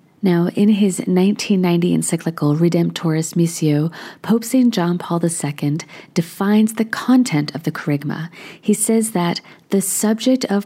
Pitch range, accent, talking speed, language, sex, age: 165-210 Hz, American, 135 wpm, English, female, 40-59